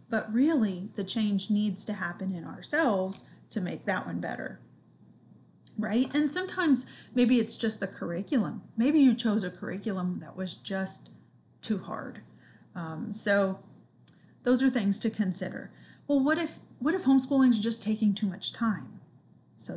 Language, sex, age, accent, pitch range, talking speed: English, female, 30-49, American, 195-235 Hz, 155 wpm